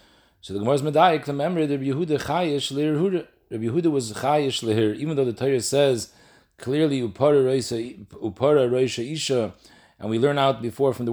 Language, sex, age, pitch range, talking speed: English, male, 40-59, 120-150 Hz, 175 wpm